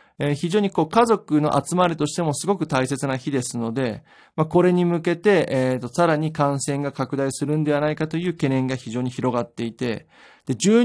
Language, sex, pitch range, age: Japanese, male, 125-175 Hz, 20-39